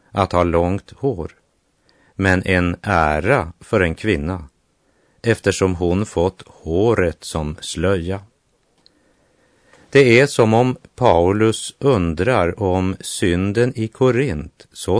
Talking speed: 110 wpm